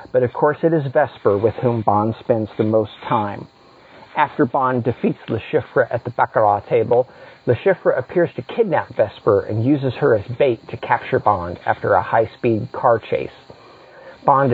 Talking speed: 175 wpm